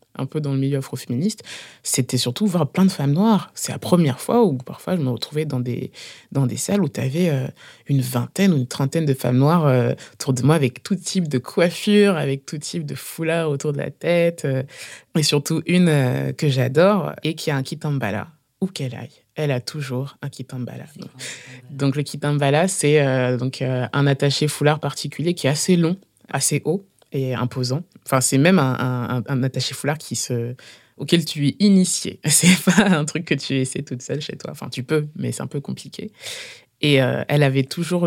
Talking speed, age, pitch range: 215 wpm, 20-39, 130-165 Hz